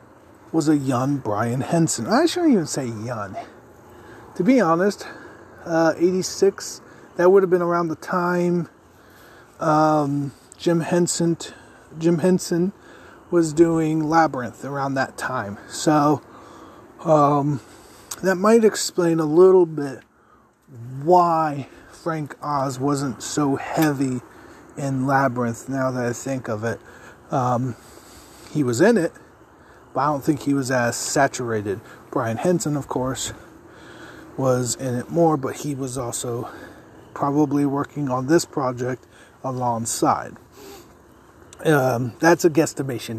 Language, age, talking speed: English, 40-59, 125 wpm